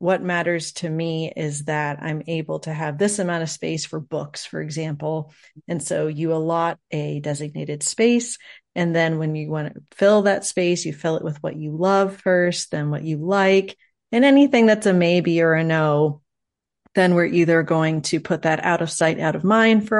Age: 30-49